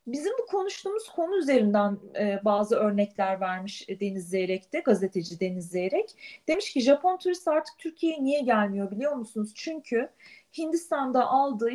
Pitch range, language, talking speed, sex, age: 205-300 Hz, Turkish, 140 wpm, female, 40-59